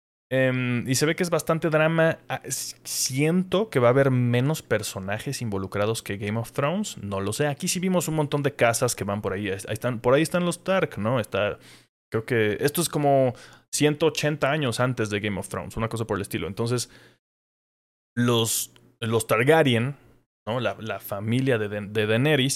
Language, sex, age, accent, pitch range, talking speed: Spanish, male, 20-39, Mexican, 110-145 Hz, 180 wpm